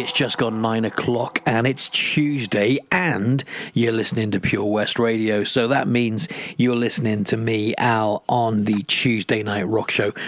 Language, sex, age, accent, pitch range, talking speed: English, male, 40-59, British, 110-140 Hz, 170 wpm